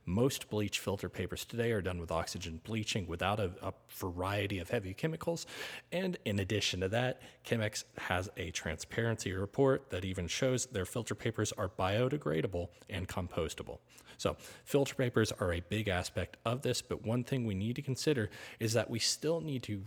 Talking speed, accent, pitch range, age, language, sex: 180 wpm, American, 90-115 Hz, 30-49, English, male